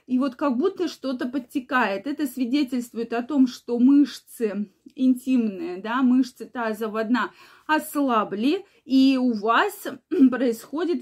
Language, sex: Russian, female